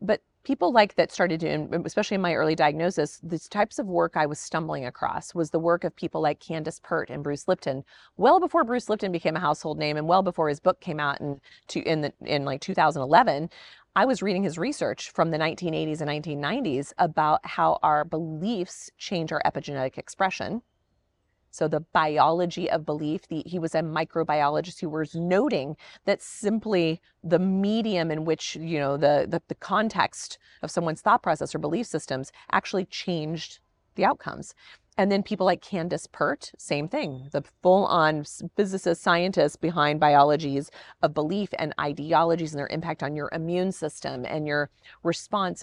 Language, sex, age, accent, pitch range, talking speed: English, female, 30-49, American, 150-185 Hz, 175 wpm